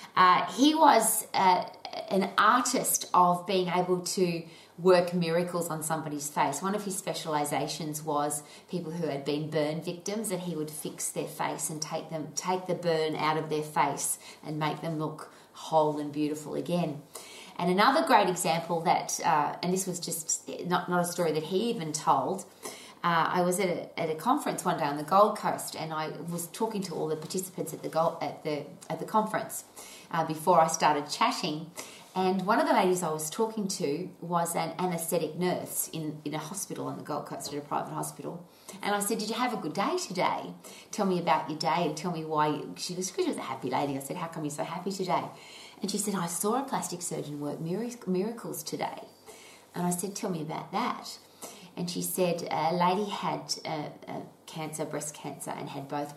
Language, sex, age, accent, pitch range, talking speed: English, female, 30-49, Australian, 155-185 Hz, 205 wpm